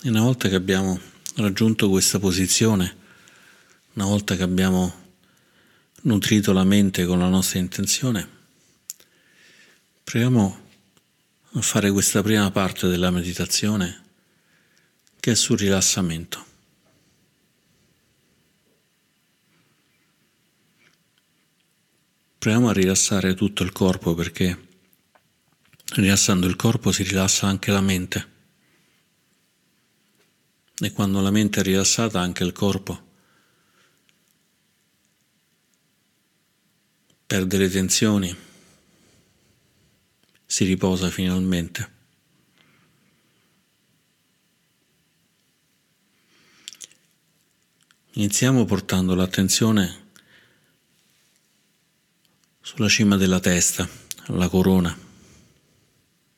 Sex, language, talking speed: male, Italian, 75 wpm